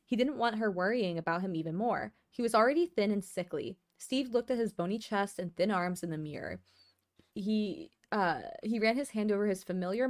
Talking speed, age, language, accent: 215 wpm, 20-39, English, American